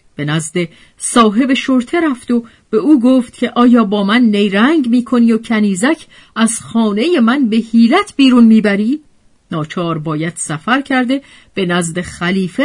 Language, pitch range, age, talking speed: Persian, 160-255 Hz, 40-59, 150 wpm